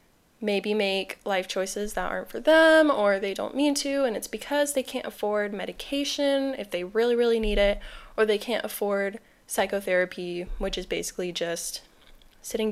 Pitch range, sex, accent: 195-255 Hz, female, American